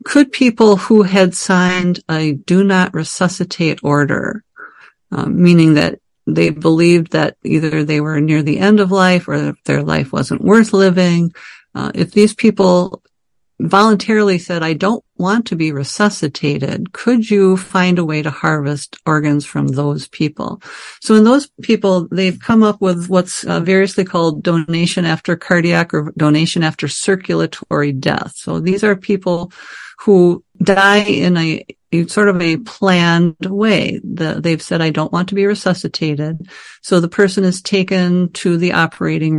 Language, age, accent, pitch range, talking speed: English, 60-79, American, 160-195 Hz, 160 wpm